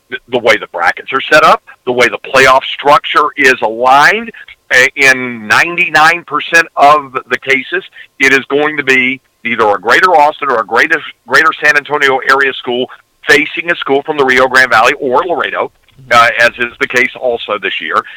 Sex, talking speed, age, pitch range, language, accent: male, 180 wpm, 50-69, 125-155 Hz, English, American